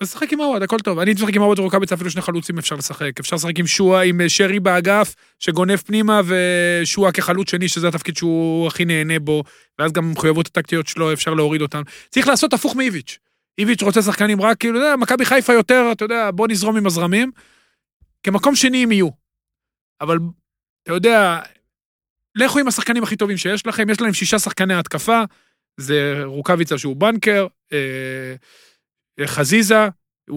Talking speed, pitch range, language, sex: 140 wpm, 170-225 Hz, Hebrew, male